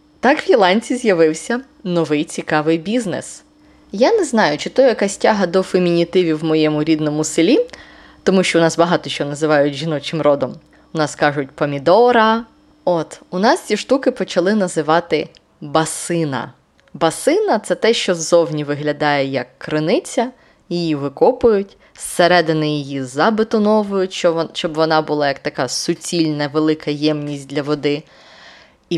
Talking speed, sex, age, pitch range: 135 wpm, female, 20-39, 150-185 Hz